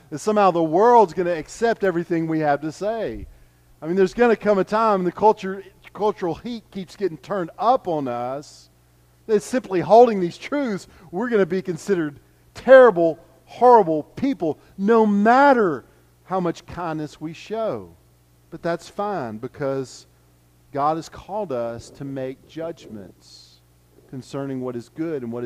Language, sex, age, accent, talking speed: English, male, 40-59, American, 160 wpm